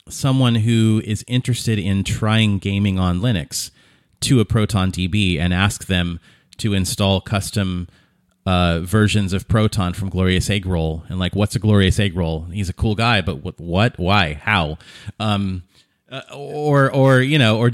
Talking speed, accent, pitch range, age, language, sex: 165 wpm, American, 95-120 Hz, 30-49, English, male